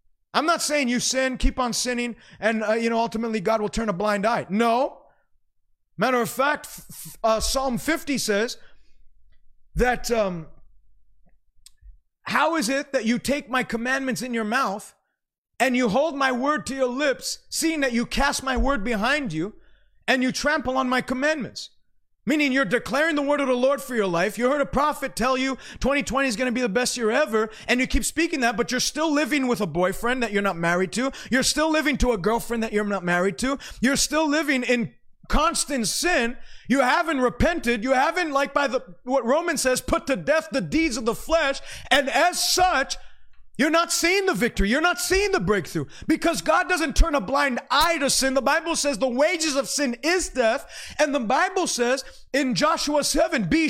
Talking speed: 200 wpm